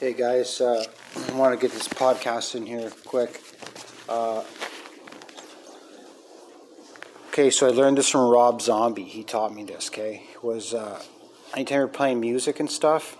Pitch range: 110-130 Hz